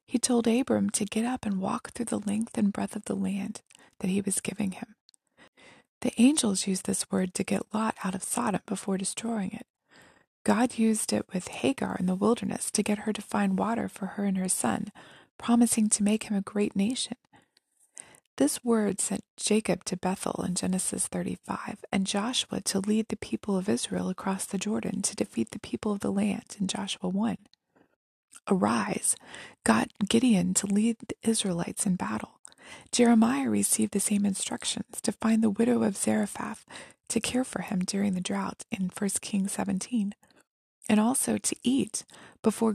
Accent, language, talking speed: American, English, 180 wpm